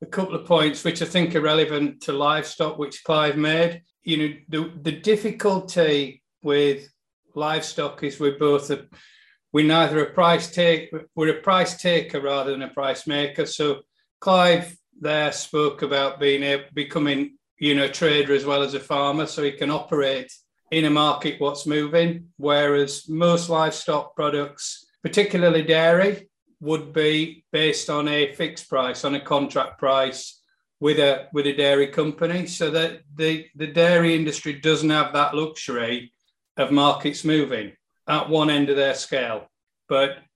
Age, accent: 40-59, British